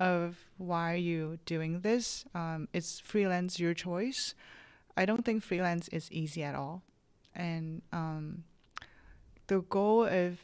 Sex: female